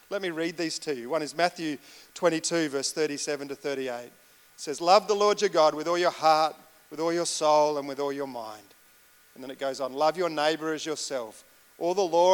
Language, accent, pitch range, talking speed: English, Australian, 145-175 Hz, 230 wpm